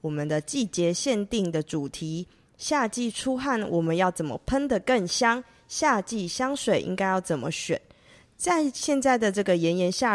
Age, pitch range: 20-39, 165-220 Hz